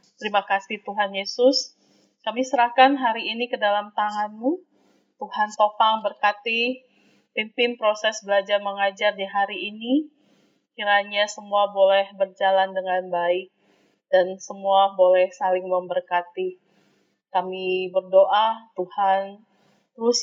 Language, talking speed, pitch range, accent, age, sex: Indonesian, 105 wpm, 190-230 Hz, native, 30-49, female